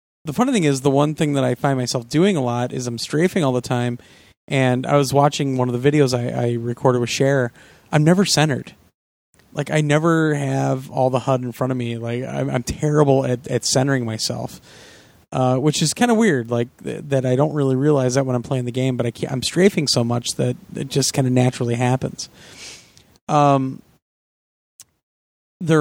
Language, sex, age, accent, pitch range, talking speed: English, male, 30-49, American, 120-145 Hz, 210 wpm